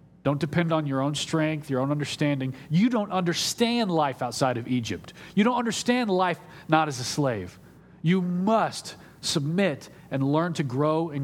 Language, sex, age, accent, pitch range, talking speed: English, male, 40-59, American, 130-160 Hz, 170 wpm